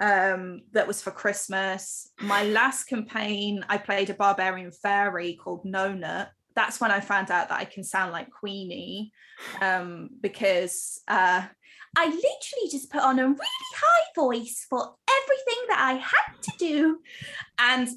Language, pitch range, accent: English, 210-275 Hz, British